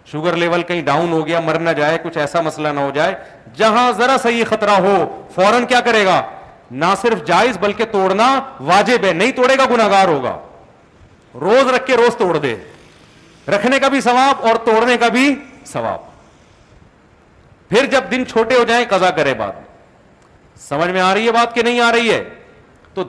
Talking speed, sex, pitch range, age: 185 wpm, male, 180-230 Hz, 40-59